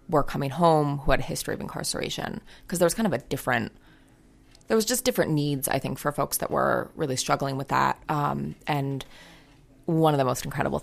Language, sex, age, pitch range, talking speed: English, female, 20-39, 135-160 Hz, 210 wpm